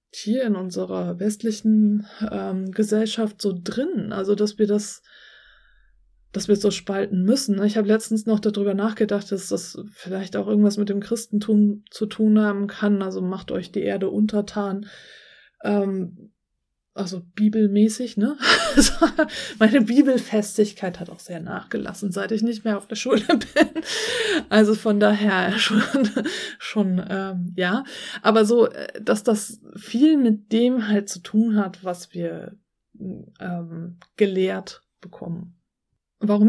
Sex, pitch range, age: female, 190-225 Hz, 20-39